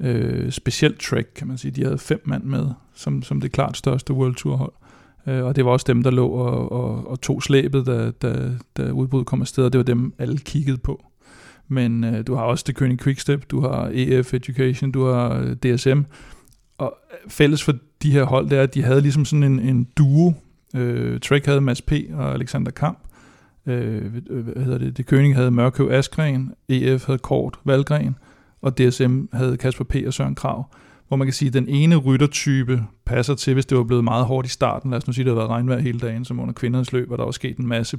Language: Danish